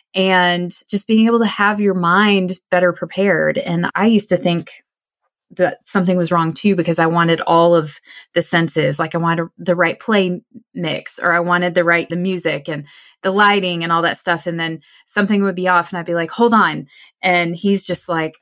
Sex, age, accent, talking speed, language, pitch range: female, 20-39, American, 210 wpm, English, 165-200 Hz